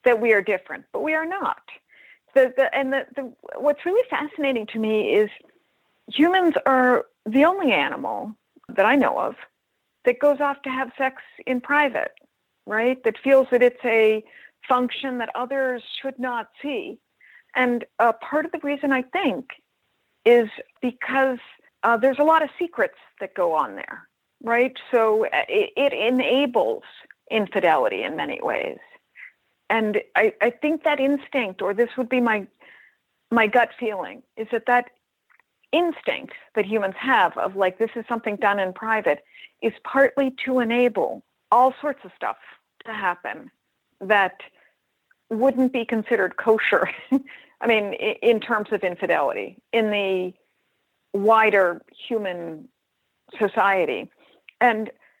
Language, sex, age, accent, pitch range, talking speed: English, female, 50-69, American, 225-280 Hz, 140 wpm